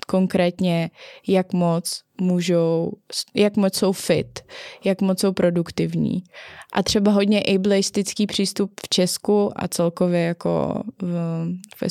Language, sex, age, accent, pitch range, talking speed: Czech, female, 20-39, native, 175-200 Hz, 120 wpm